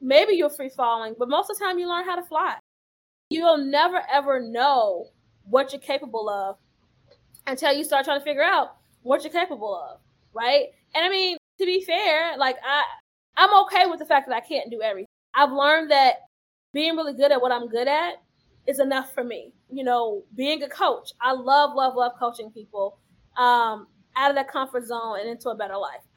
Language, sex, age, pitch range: English, female, 20-39, 235-300 Hz